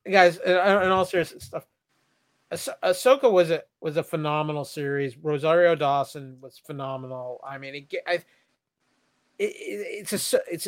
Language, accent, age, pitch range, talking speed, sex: English, American, 30-49, 145-175 Hz, 135 wpm, male